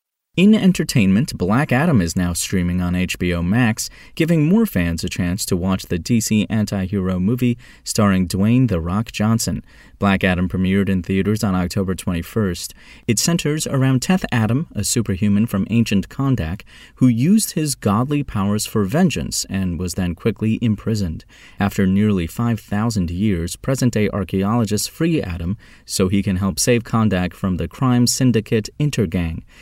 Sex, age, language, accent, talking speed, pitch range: male, 30-49, English, American, 155 wpm, 90-115 Hz